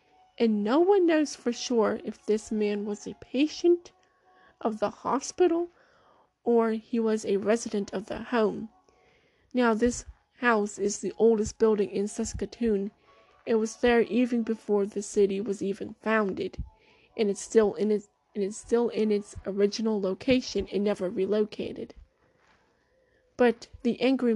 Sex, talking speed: female, 140 wpm